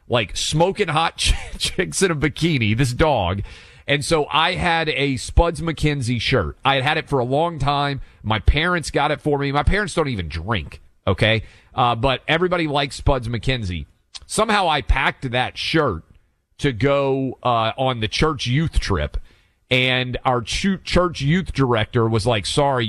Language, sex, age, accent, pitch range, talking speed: English, male, 40-59, American, 110-150 Hz, 170 wpm